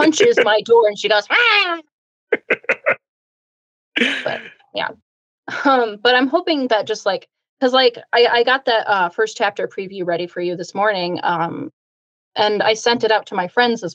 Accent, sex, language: American, female, English